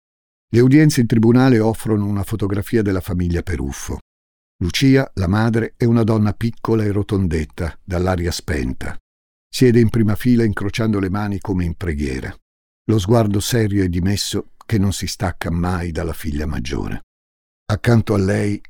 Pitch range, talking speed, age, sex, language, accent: 85-110 Hz, 150 wpm, 50-69, male, Italian, native